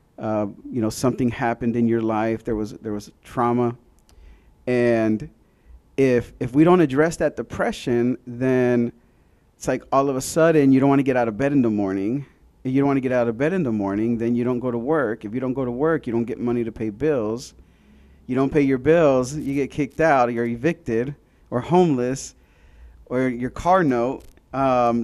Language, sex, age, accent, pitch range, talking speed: English, male, 40-59, American, 115-140 Hz, 210 wpm